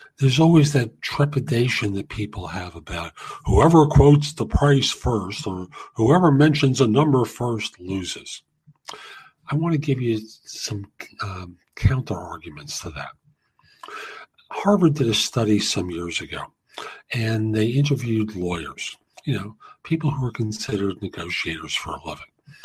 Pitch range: 100-140 Hz